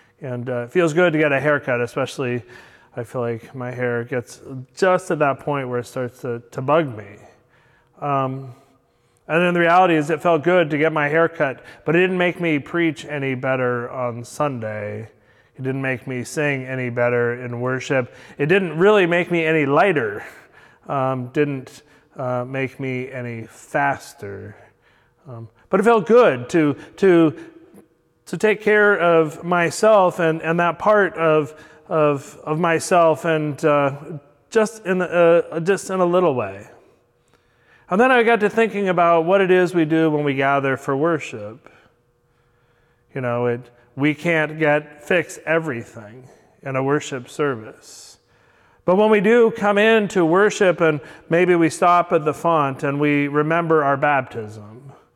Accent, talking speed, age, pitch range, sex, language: American, 170 wpm, 30-49, 125-170 Hz, male, English